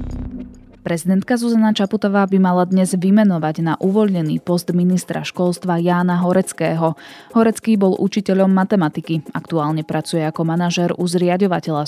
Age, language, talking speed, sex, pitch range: 20-39, Slovak, 115 wpm, female, 155-195 Hz